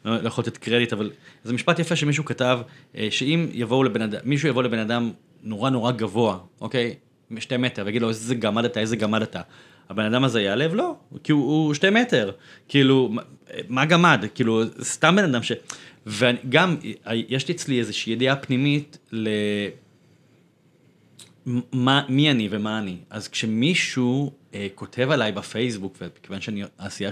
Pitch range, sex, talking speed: 105-140 Hz, male, 160 wpm